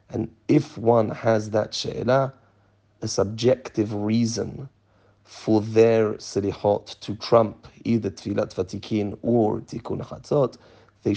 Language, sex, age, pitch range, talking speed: English, male, 40-59, 105-115 Hz, 115 wpm